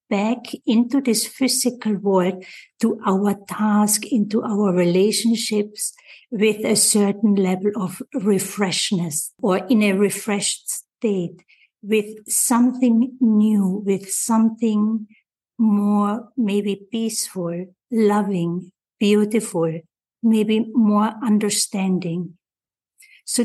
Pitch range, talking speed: 190-225 Hz, 90 wpm